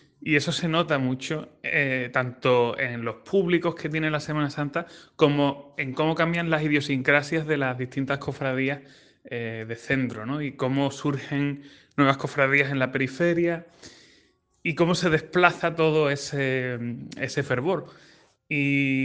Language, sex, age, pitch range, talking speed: Spanish, male, 20-39, 125-150 Hz, 145 wpm